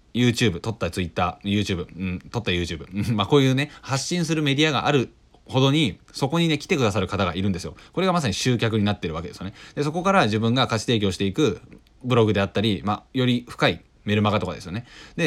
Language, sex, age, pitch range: Japanese, male, 20-39, 95-125 Hz